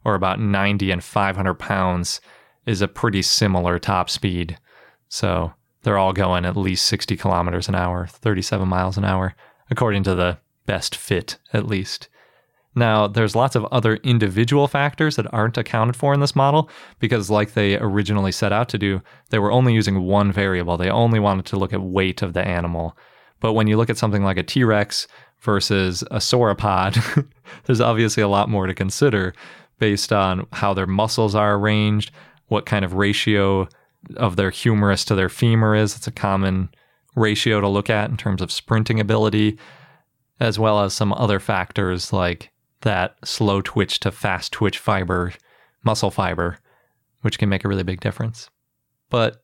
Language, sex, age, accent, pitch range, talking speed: English, male, 20-39, American, 95-115 Hz, 175 wpm